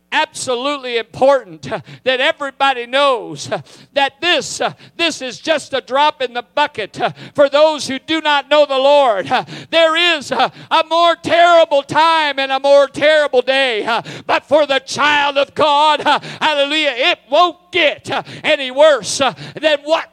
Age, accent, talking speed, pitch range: 50-69, American, 145 wpm, 175-290 Hz